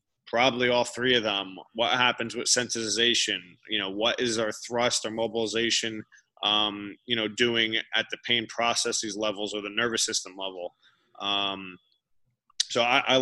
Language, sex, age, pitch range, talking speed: English, male, 20-39, 105-120 Hz, 160 wpm